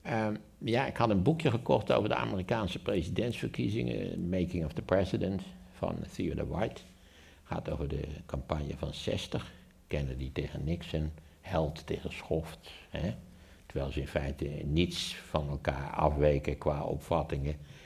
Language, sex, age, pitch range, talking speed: Dutch, male, 60-79, 70-85 Hz, 135 wpm